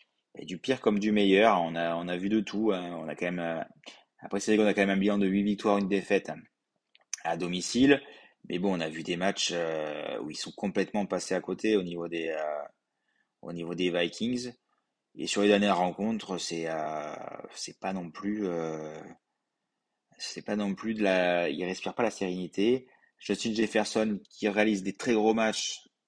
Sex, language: male, French